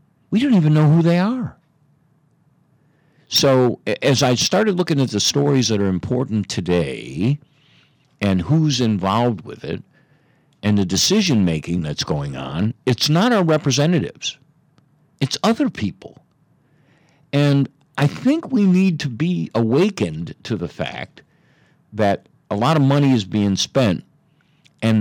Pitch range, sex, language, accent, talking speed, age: 105-155 Hz, male, English, American, 135 wpm, 60-79